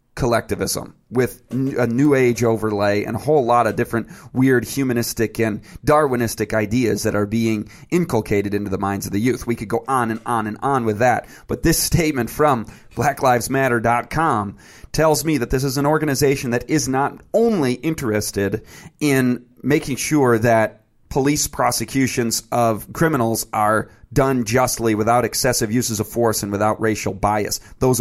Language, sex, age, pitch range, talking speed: English, male, 30-49, 110-140 Hz, 160 wpm